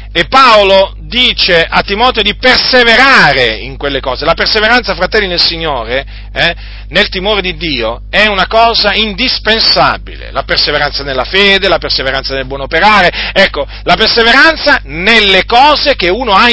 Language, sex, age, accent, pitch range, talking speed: Italian, male, 40-59, native, 115-185 Hz, 150 wpm